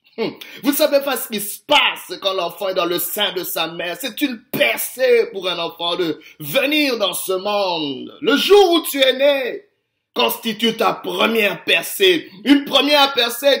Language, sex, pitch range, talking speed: French, male, 175-280 Hz, 175 wpm